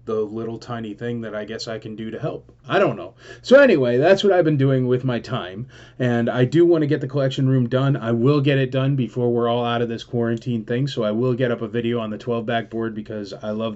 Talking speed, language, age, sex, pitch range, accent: 270 wpm, English, 20-39, male, 115-135 Hz, American